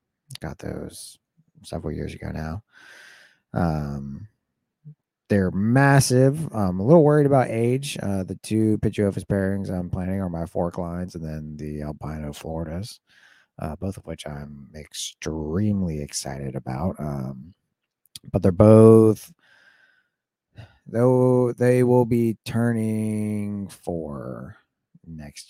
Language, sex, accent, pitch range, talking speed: English, male, American, 80-110 Hz, 120 wpm